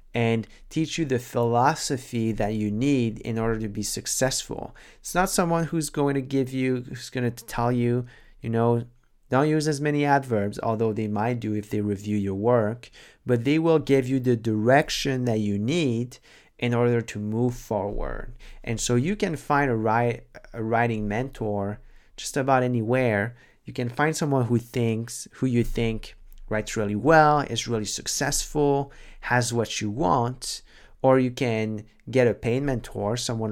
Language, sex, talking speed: English, male, 170 wpm